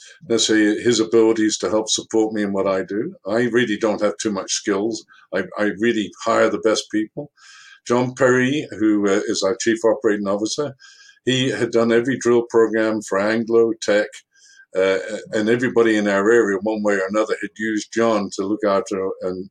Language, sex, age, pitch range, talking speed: English, male, 60-79, 105-130 Hz, 190 wpm